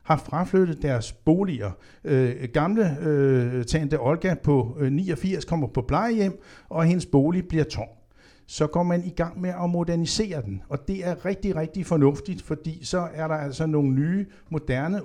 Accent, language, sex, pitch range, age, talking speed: native, Danish, male, 135-180 Hz, 60-79, 170 wpm